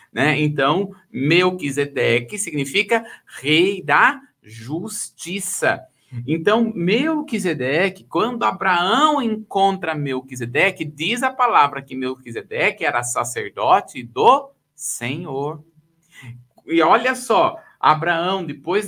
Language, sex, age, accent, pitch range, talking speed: Portuguese, male, 50-69, Brazilian, 150-230 Hz, 85 wpm